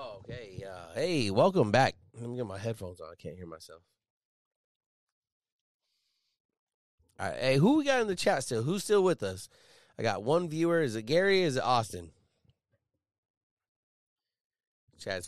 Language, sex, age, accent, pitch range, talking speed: English, male, 30-49, American, 95-120 Hz, 155 wpm